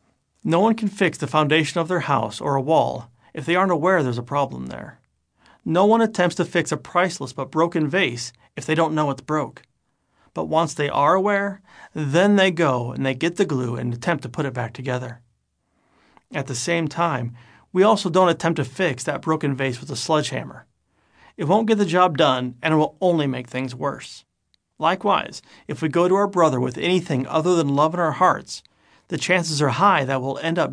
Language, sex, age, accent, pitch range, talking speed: English, male, 40-59, American, 130-170 Hz, 210 wpm